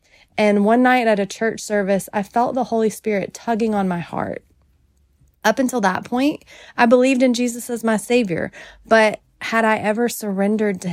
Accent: American